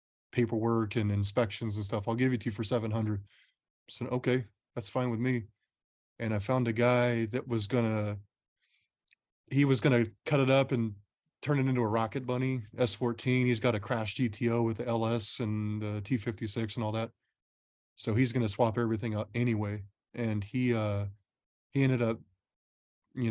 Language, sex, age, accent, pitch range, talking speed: English, male, 30-49, American, 105-125 Hz, 175 wpm